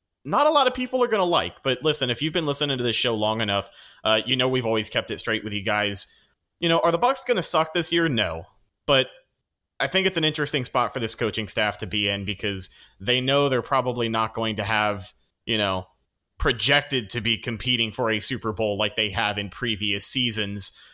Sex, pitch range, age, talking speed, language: male, 105-140 Hz, 30-49, 230 wpm, English